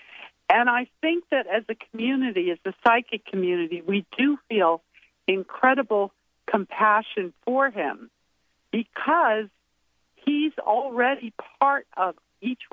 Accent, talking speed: American, 115 wpm